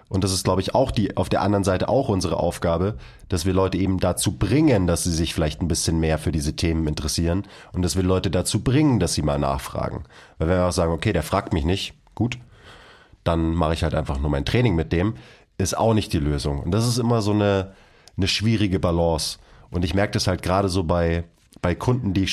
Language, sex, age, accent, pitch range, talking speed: German, male, 30-49, German, 85-100 Hz, 235 wpm